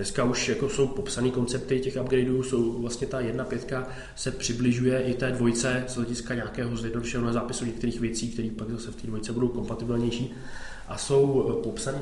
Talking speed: 180 wpm